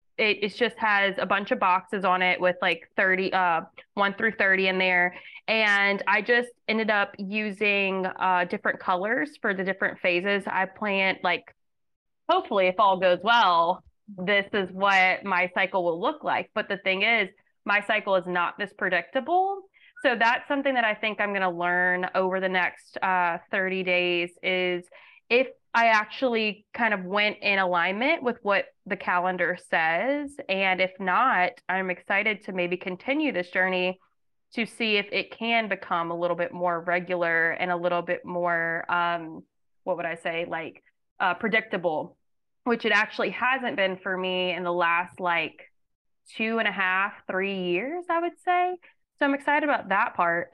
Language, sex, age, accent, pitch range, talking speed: English, female, 20-39, American, 180-220 Hz, 175 wpm